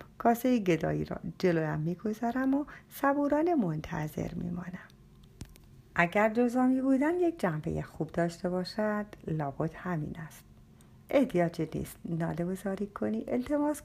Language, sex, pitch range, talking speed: Persian, female, 170-245 Hz, 115 wpm